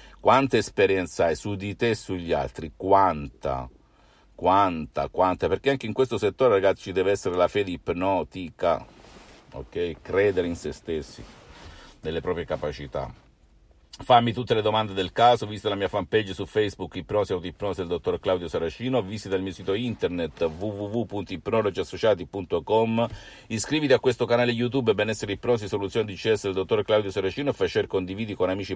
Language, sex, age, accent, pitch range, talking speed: Italian, male, 50-69, native, 95-125 Hz, 165 wpm